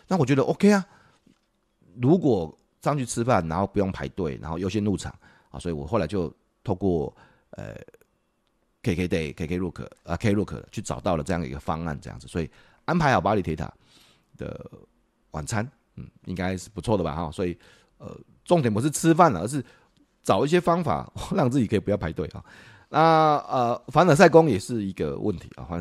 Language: Chinese